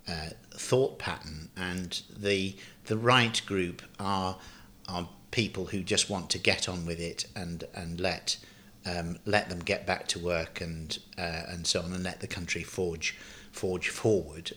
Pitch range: 90-105 Hz